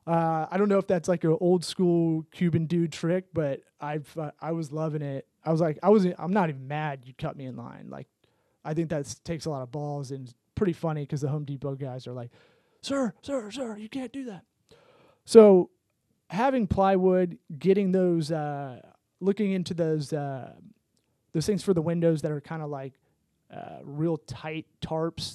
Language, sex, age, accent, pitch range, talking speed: English, male, 20-39, American, 145-175 Hz, 200 wpm